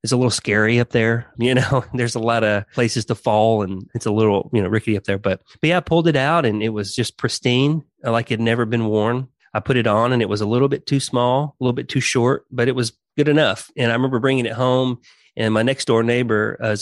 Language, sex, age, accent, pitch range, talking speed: English, male, 30-49, American, 105-125 Hz, 275 wpm